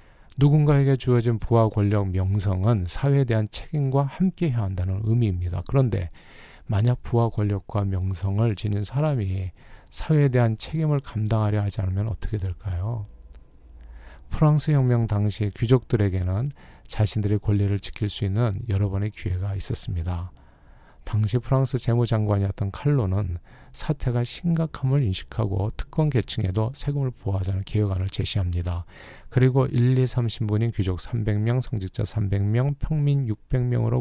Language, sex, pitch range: Korean, male, 95-125 Hz